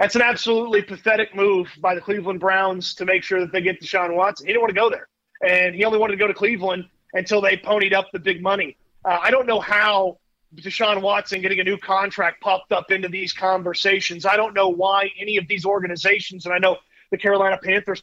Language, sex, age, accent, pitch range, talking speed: English, male, 30-49, American, 185-205 Hz, 225 wpm